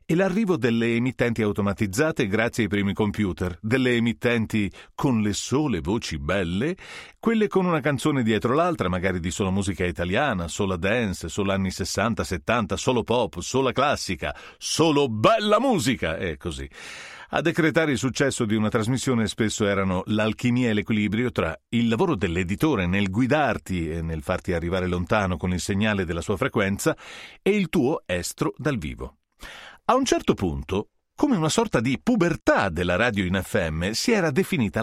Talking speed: 160 wpm